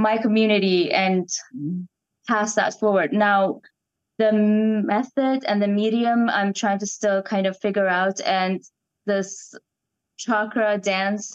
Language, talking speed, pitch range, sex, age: English, 125 wpm, 190-215 Hz, female, 10-29